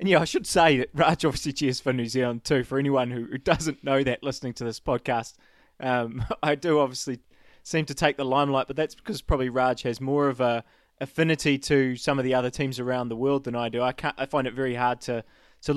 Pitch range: 125-145 Hz